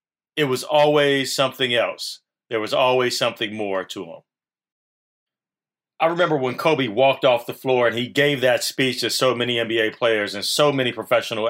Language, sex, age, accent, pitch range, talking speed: English, male, 40-59, American, 115-150 Hz, 175 wpm